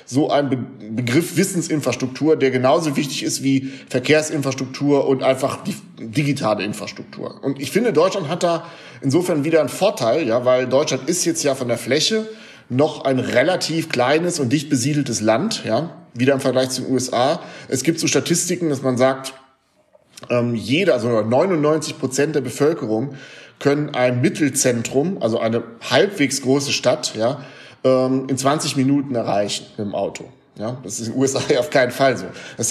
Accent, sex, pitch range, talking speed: German, male, 125-150 Hz, 165 wpm